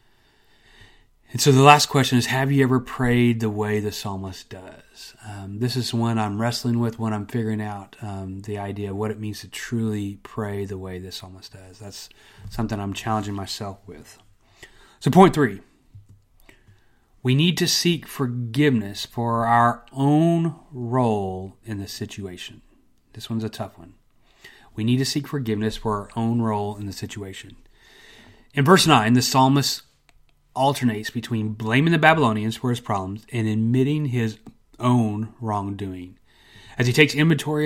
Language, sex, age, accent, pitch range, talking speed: English, male, 30-49, American, 105-125 Hz, 160 wpm